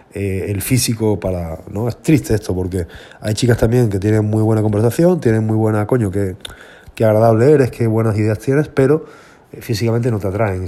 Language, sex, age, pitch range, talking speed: Spanish, male, 20-39, 95-115 Hz, 190 wpm